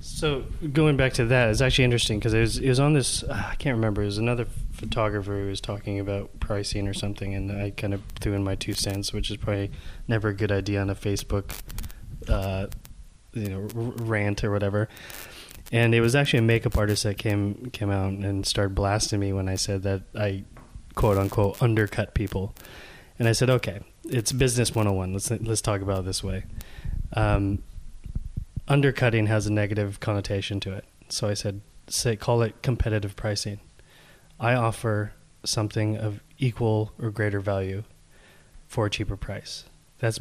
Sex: male